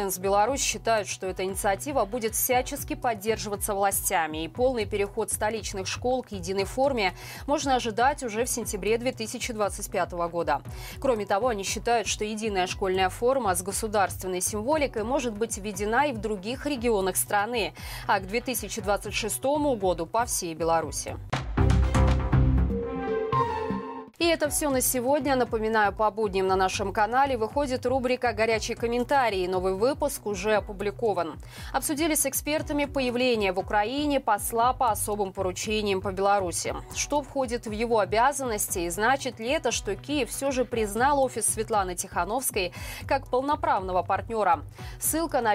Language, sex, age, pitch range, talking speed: Russian, female, 20-39, 195-255 Hz, 135 wpm